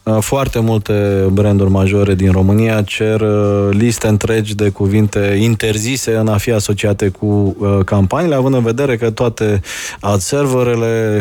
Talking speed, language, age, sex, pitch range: 130 wpm, Romanian, 20-39, male, 100-125 Hz